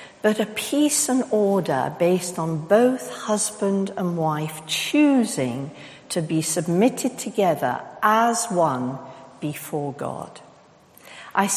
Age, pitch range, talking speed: 60-79, 170-235 Hz, 110 wpm